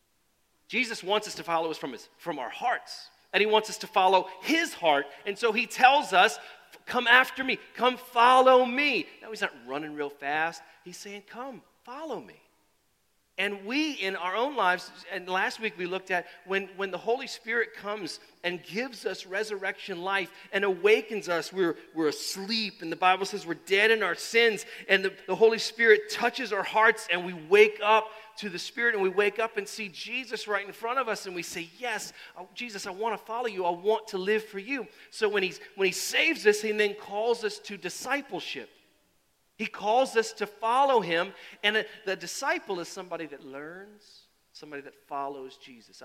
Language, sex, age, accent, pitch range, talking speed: English, male, 40-59, American, 180-225 Hz, 200 wpm